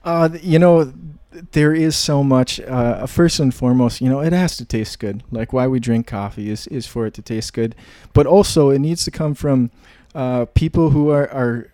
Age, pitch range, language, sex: 20-39, 120-145 Hz, English, male